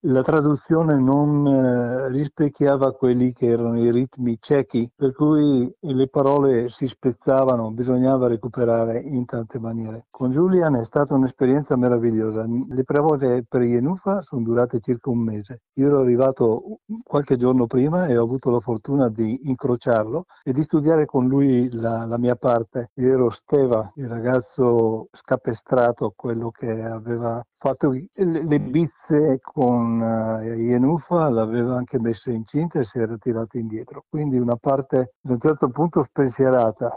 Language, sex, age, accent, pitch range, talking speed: Italian, male, 60-79, native, 115-140 Hz, 150 wpm